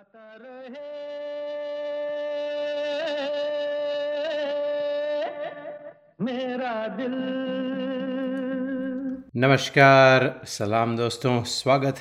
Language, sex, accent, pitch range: Hindi, male, native, 100-140 Hz